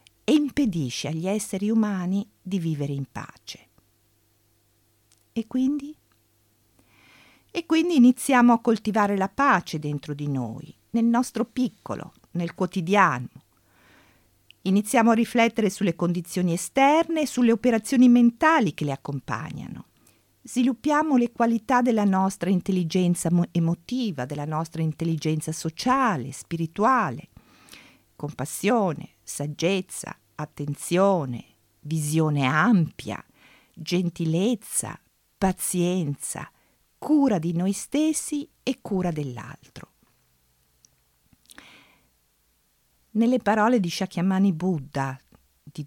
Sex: female